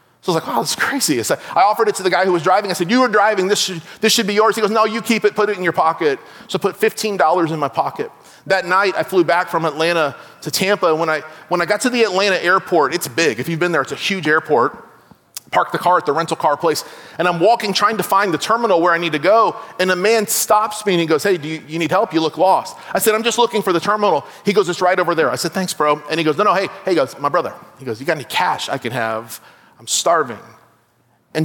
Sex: male